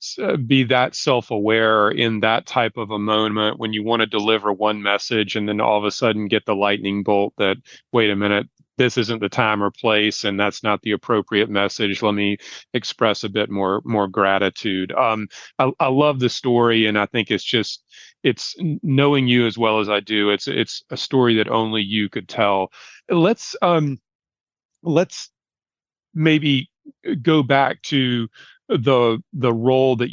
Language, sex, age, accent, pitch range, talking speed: English, male, 40-59, American, 105-130 Hz, 175 wpm